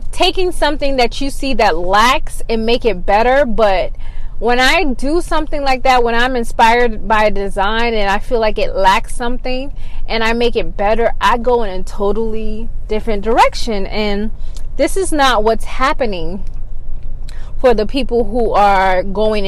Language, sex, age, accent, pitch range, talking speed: English, female, 20-39, American, 195-270 Hz, 170 wpm